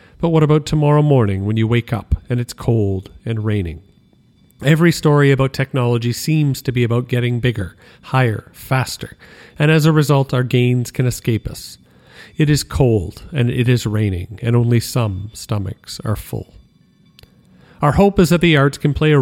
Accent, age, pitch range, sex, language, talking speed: American, 40-59, 110-140 Hz, male, English, 180 wpm